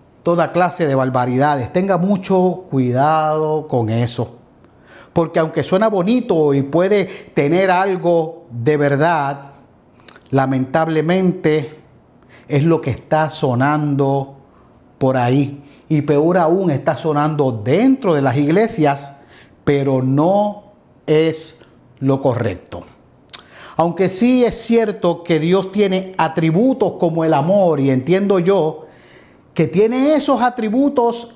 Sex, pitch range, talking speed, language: male, 145-200 Hz, 115 wpm, Spanish